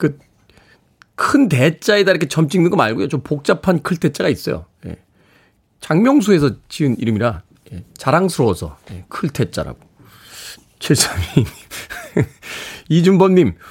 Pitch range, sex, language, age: 130-190 Hz, male, Korean, 40-59